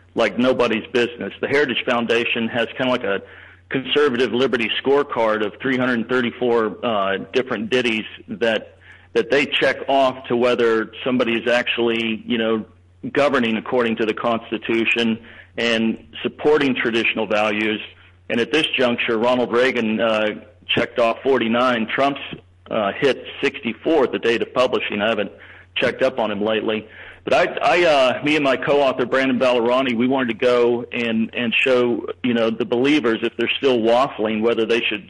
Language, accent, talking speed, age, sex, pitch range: English, American, 160 wpm, 40-59, male, 110-125 Hz